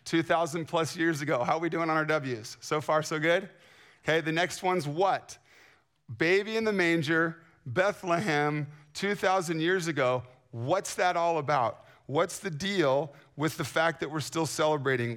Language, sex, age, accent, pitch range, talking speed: English, male, 40-59, American, 125-160 Hz, 165 wpm